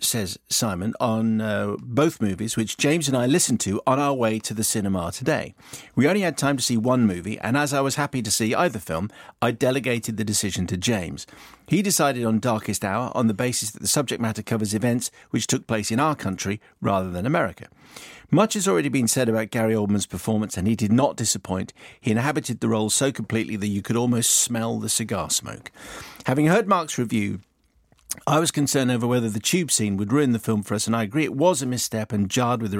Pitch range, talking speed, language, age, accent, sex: 105-135 Hz, 225 wpm, English, 50-69, British, male